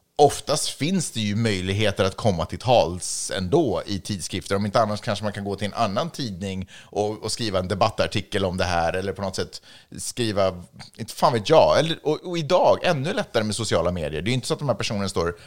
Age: 30-49